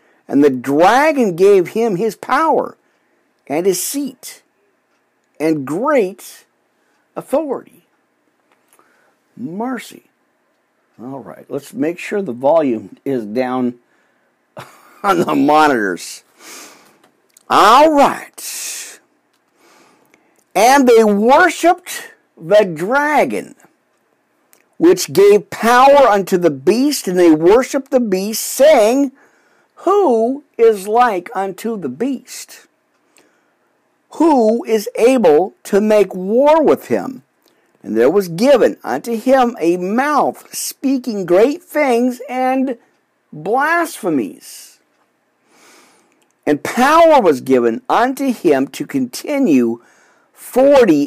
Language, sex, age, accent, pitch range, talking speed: English, male, 50-69, American, 190-285 Hz, 95 wpm